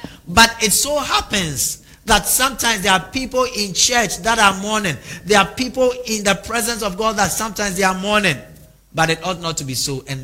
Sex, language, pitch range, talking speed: male, English, 150-210 Hz, 205 wpm